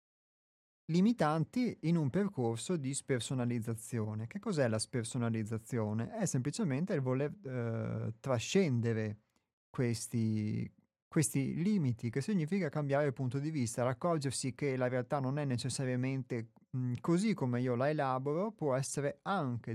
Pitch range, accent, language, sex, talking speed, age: 120-145 Hz, native, Italian, male, 130 wpm, 30-49